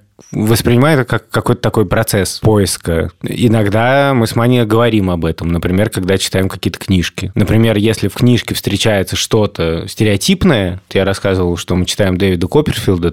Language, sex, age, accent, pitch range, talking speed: Russian, male, 20-39, native, 95-115 Hz, 155 wpm